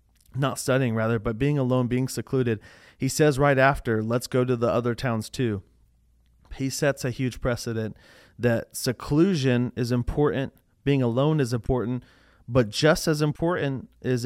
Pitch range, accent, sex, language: 120-140 Hz, American, male, English